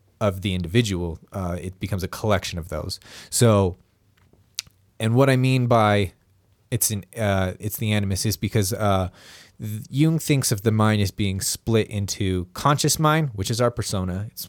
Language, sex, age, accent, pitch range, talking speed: English, male, 20-39, American, 95-120 Hz, 170 wpm